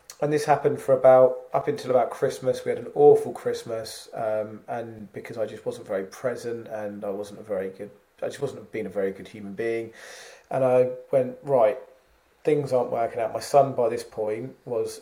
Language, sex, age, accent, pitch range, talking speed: English, male, 30-49, British, 110-170 Hz, 205 wpm